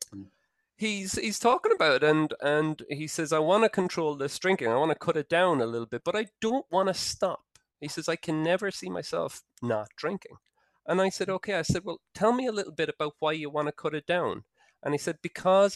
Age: 30-49